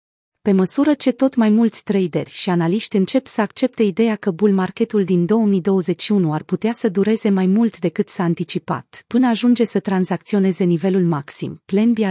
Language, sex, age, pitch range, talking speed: Romanian, female, 30-49, 180-220 Hz, 175 wpm